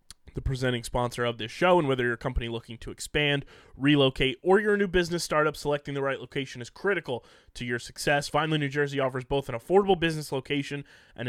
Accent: American